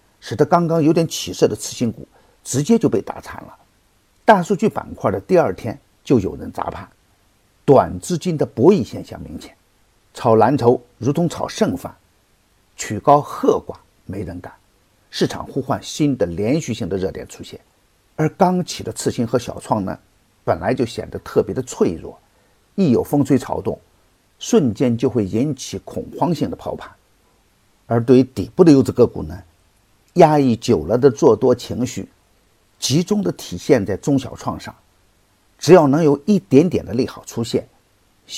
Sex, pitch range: male, 100-145 Hz